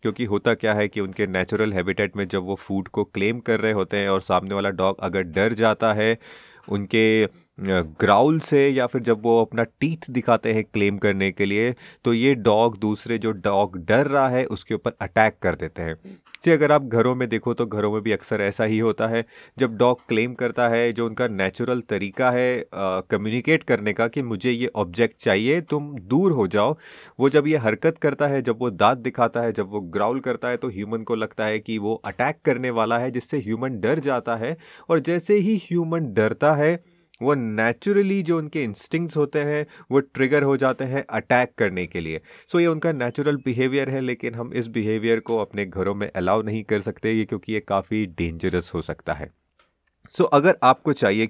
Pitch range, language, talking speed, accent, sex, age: 105-140 Hz, Hindi, 205 wpm, native, male, 30-49